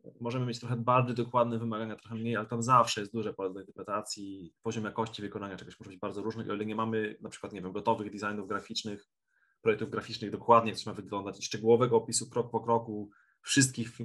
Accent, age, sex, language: native, 20-39, male, Polish